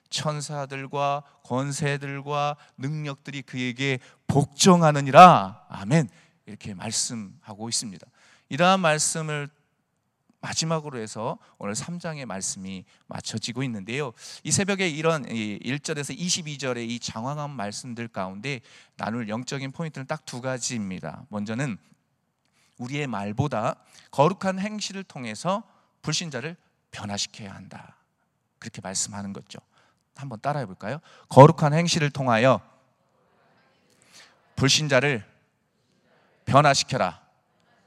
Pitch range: 115-150 Hz